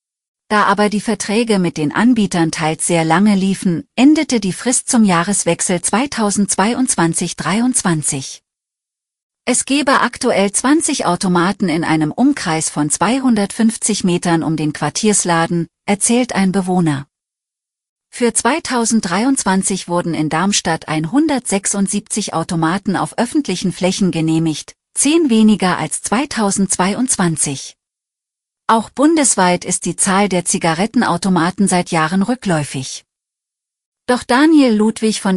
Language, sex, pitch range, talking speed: German, female, 170-225 Hz, 105 wpm